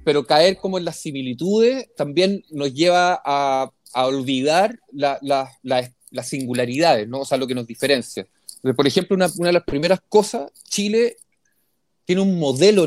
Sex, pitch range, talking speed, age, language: male, 140-200 Hz, 170 wpm, 30-49, Spanish